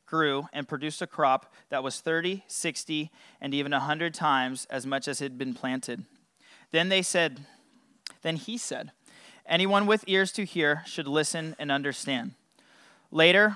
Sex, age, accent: male, 30-49, American